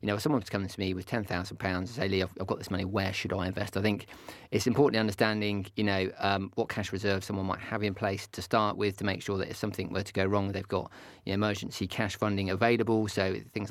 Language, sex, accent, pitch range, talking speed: English, male, British, 95-110 Hz, 265 wpm